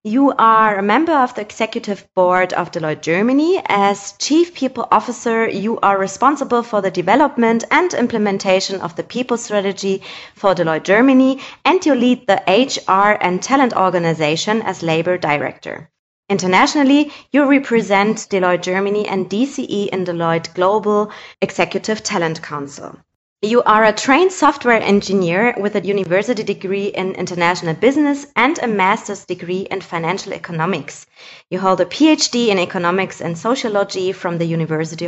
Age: 20-39